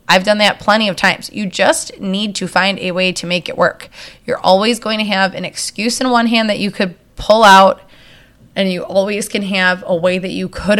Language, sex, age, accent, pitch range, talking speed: English, female, 20-39, American, 185-235 Hz, 235 wpm